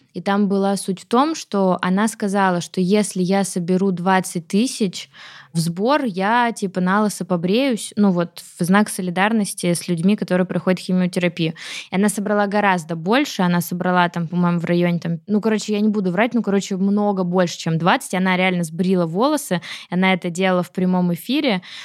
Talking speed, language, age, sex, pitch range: 180 wpm, Russian, 20-39, female, 180-205 Hz